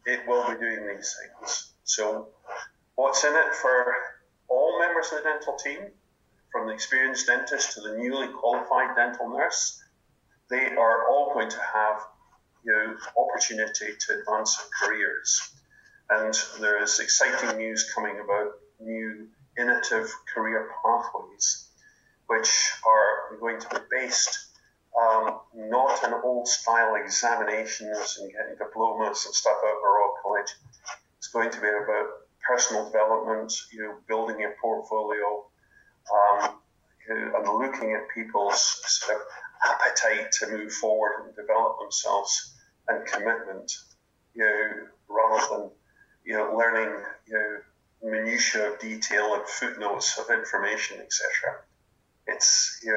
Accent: British